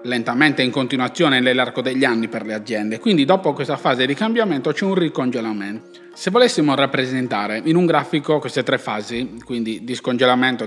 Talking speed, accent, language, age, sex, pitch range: 170 wpm, native, Italian, 30-49, male, 120-160 Hz